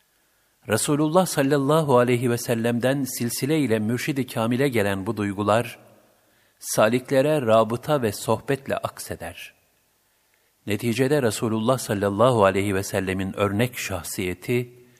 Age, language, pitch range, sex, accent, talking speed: 50-69, Turkish, 105-140 Hz, male, native, 100 wpm